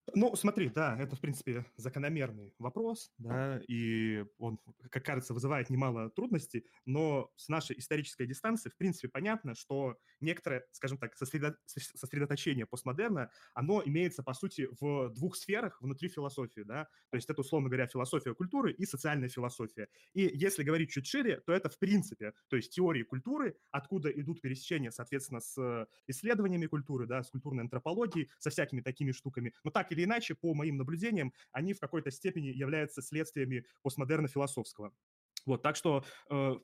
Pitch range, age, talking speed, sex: 130-160 Hz, 20-39, 155 wpm, male